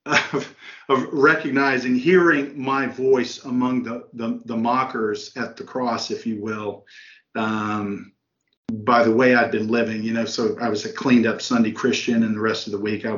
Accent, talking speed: American, 185 wpm